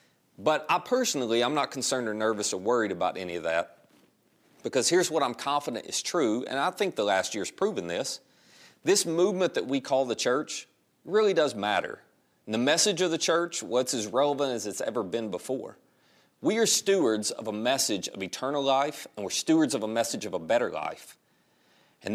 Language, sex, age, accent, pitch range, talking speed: English, male, 40-59, American, 115-170 Hz, 195 wpm